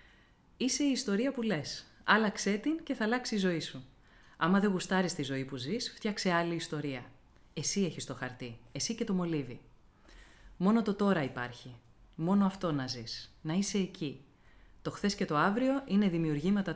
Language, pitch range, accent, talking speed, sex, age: Greek, 140-205 Hz, native, 175 wpm, female, 30-49